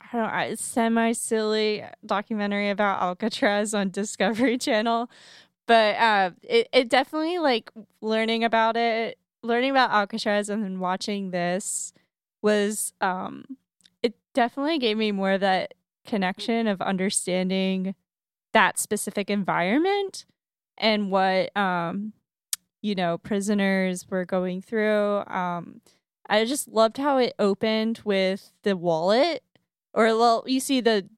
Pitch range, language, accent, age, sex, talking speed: 185-225 Hz, English, American, 10-29, female, 125 wpm